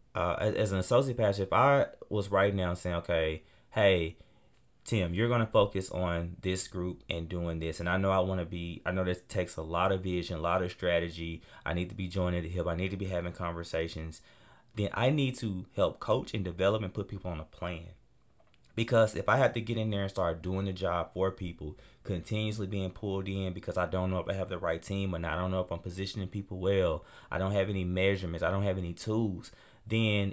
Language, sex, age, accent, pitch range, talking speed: English, male, 20-39, American, 90-105 Hz, 240 wpm